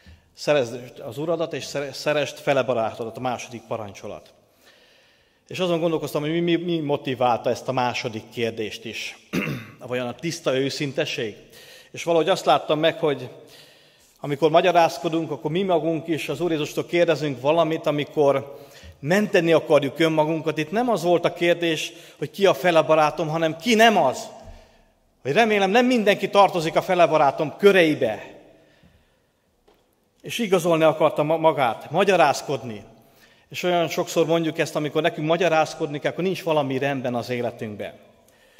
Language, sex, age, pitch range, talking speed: Hungarian, male, 30-49, 145-170 Hz, 135 wpm